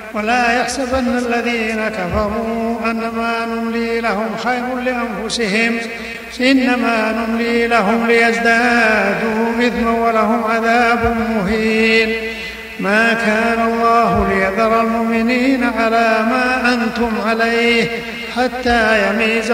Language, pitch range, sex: Arabic, 225-235 Hz, male